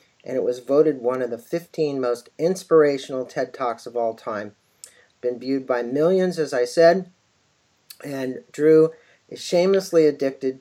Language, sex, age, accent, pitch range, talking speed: English, male, 50-69, American, 130-180 Hz, 155 wpm